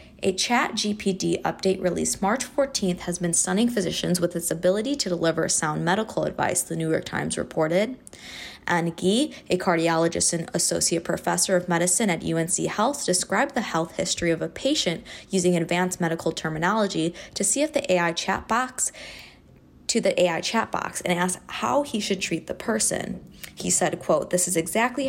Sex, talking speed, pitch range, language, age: female, 175 wpm, 170-205 Hz, English, 20-39